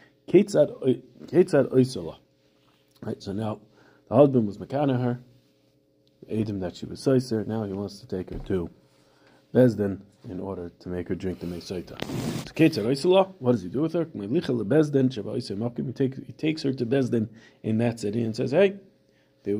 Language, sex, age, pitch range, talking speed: English, male, 40-59, 100-135 Hz, 155 wpm